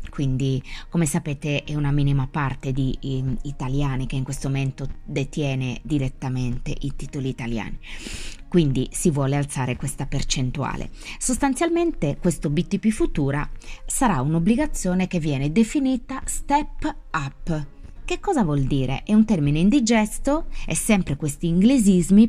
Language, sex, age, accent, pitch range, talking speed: Italian, female, 20-39, native, 140-200 Hz, 125 wpm